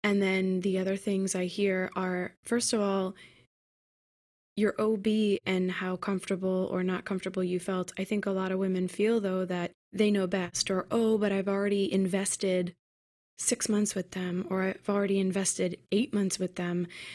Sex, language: female, English